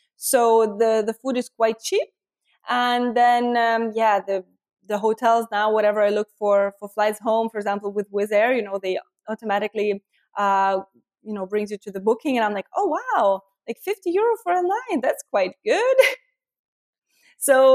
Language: English